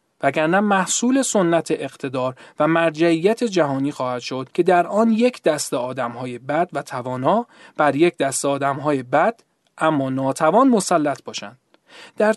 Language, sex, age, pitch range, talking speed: Persian, male, 40-59, 140-205 Hz, 135 wpm